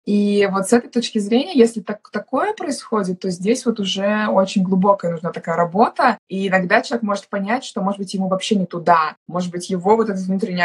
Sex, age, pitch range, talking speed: female, 20-39, 190-225 Hz, 210 wpm